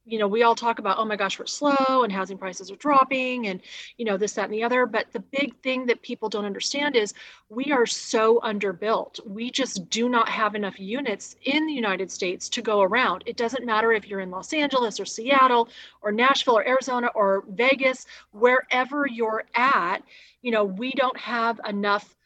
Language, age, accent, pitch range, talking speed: English, 30-49, American, 200-245 Hz, 205 wpm